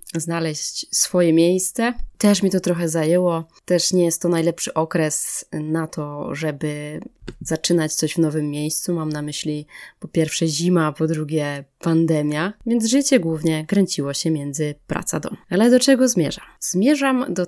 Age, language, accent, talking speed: 20-39, Polish, native, 155 wpm